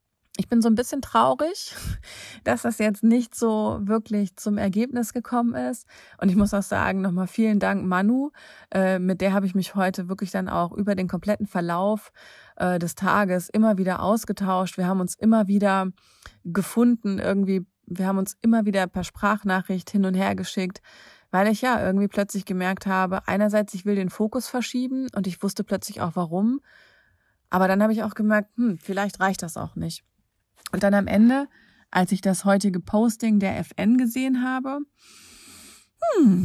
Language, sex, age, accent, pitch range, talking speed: German, female, 30-49, German, 180-225 Hz, 175 wpm